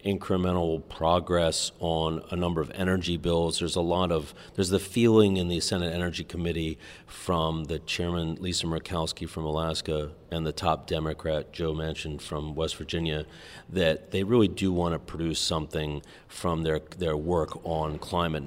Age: 40-59